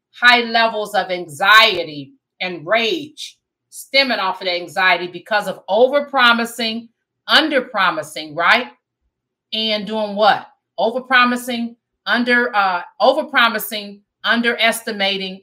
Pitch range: 185-235 Hz